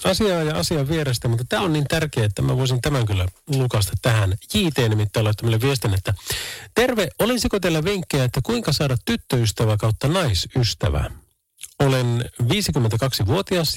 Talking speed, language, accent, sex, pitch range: 145 wpm, Finnish, native, male, 100-140 Hz